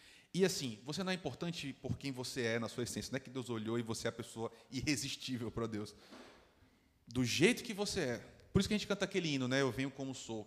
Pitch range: 115-150 Hz